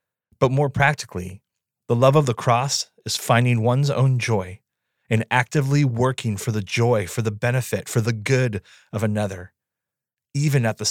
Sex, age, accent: male, 30-49, American